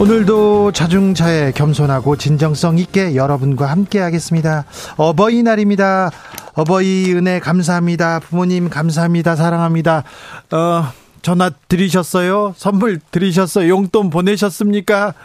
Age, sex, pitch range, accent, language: 40-59, male, 150-195 Hz, native, Korean